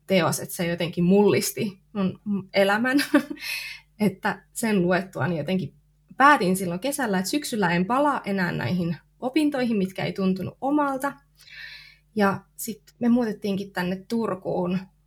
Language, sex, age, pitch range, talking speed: Finnish, female, 20-39, 180-220 Hz, 125 wpm